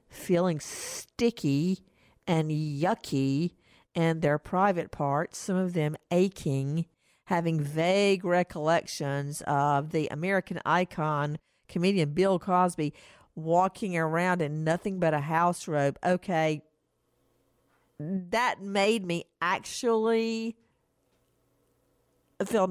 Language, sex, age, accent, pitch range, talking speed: English, female, 50-69, American, 150-185 Hz, 95 wpm